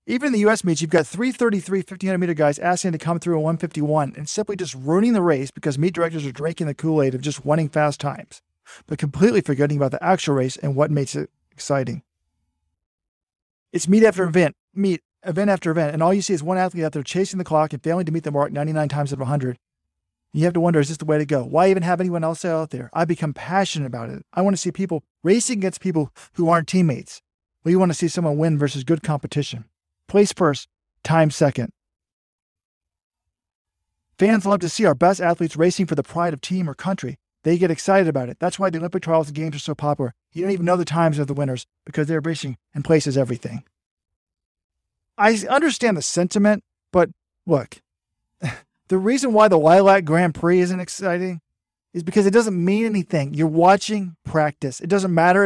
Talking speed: 210 wpm